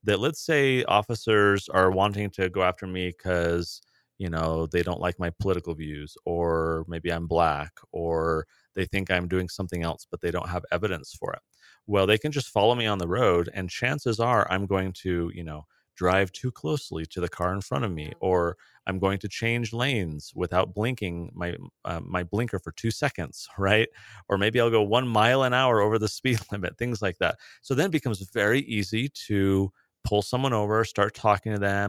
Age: 30-49